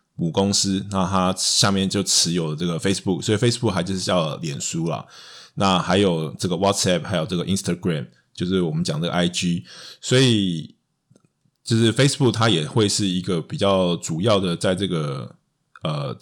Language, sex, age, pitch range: Chinese, male, 20-39, 90-110 Hz